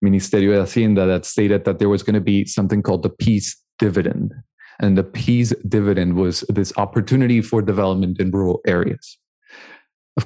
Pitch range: 95-120 Hz